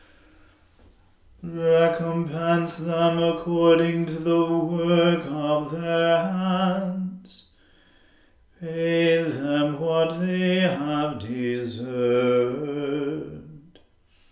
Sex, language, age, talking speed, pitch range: male, English, 40-59, 65 wpm, 150-170 Hz